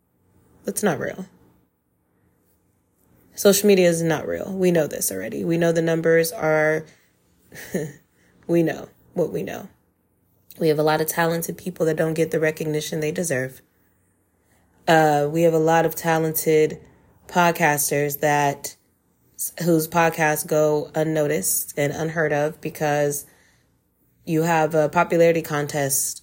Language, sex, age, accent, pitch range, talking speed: English, female, 20-39, American, 145-165 Hz, 135 wpm